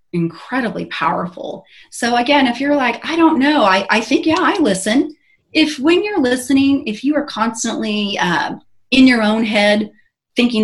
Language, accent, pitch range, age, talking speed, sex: English, American, 180-260 Hz, 30-49, 170 wpm, female